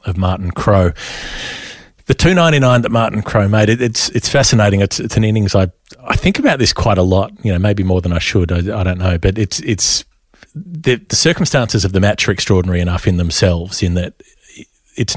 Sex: male